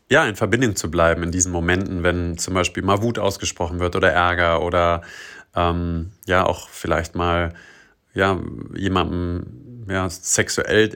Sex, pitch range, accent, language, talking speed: male, 90-115 Hz, German, German, 150 wpm